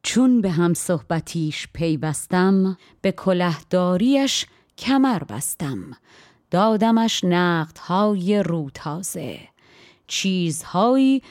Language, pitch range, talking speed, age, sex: Persian, 160-205 Hz, 80 wpm, 30-49, female